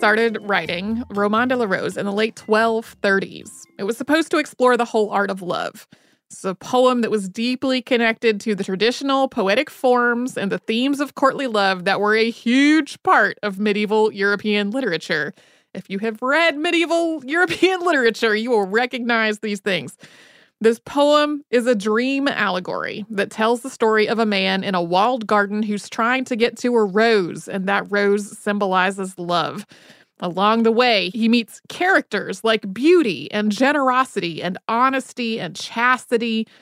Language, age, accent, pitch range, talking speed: English, 30-49, American, 210-265 Hz, 165 wpm